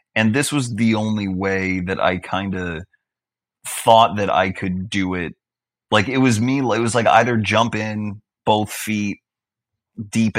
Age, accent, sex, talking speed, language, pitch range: 30-49, American, male, 170 wpm, English, 90-105 Hz